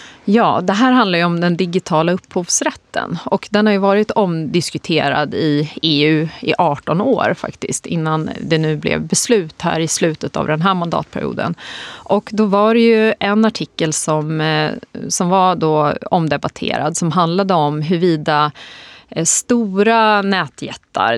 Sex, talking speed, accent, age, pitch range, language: female, 140 wpm, native, 30-49, 155-200 Hz, Swedish